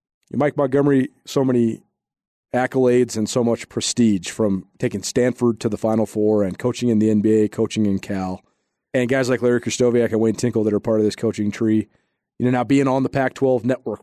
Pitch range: 115-140 Hz